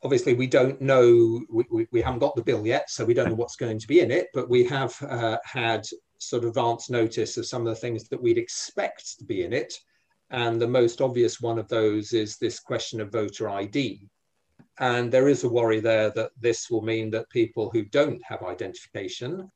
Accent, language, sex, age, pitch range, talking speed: British, English, male, 40-59, 115-135 Hz, 220 wpm